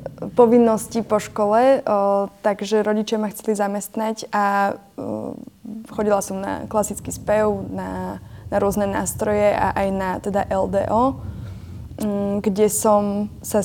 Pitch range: 195-215 Hz